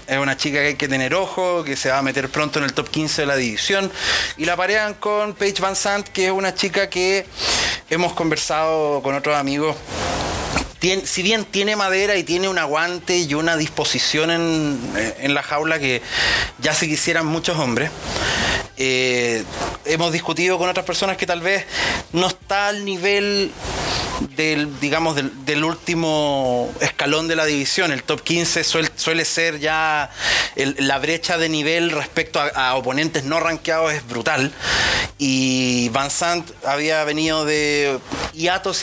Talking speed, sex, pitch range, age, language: 165 wpm, male, 140-175 Hz, 30-49, Spanish